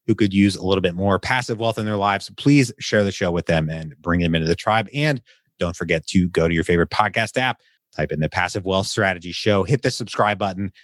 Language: English